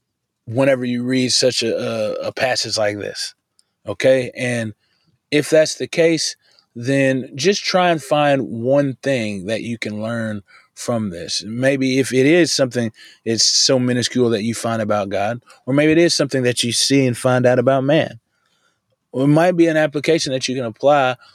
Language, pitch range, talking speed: English, 115-140 Hz, 185 wpm